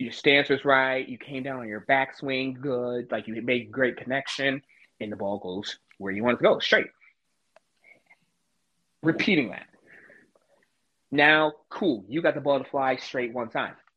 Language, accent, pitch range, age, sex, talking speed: English, American, 110-135 Hz, 20-39, male, 170 wpm